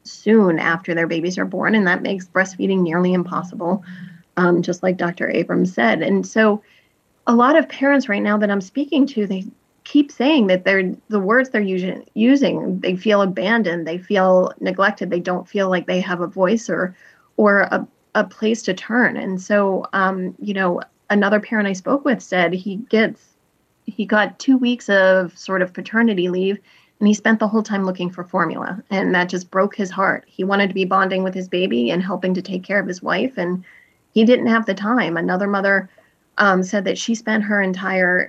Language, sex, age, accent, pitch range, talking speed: English, female, 30-49, American, 185-215 Hz, 200 wpm